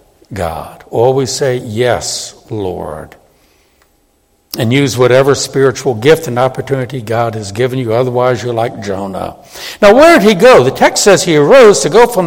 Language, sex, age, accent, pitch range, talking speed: English, male, 60-79, American, 130-220 Hz, 160 wpm